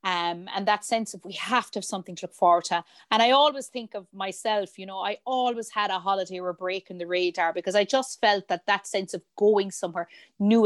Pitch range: 190-230 Hz